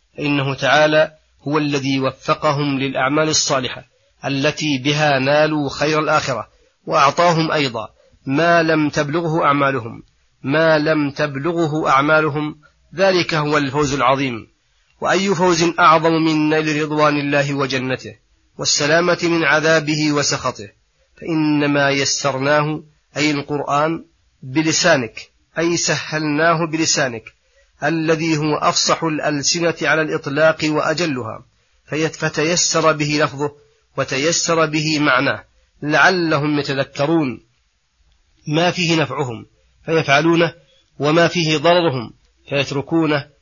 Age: 30-49